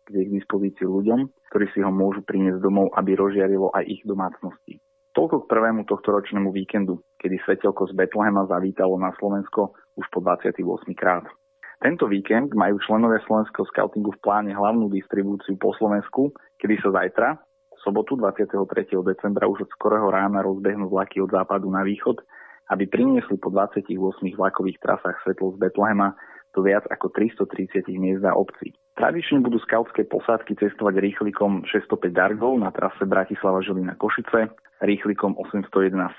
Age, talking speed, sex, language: 30-49, 150 wpm, male, Slovak